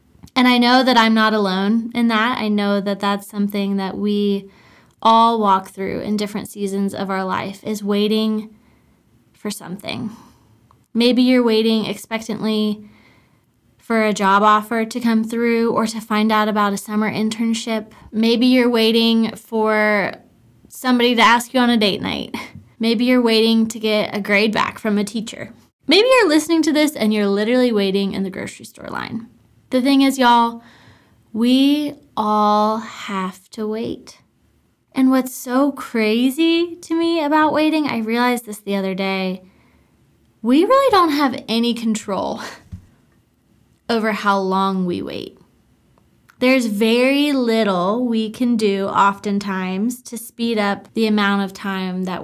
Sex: female